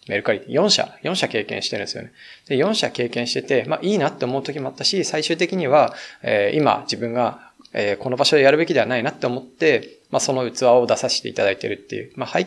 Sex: male